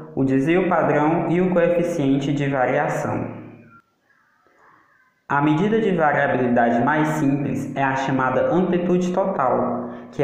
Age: 20-39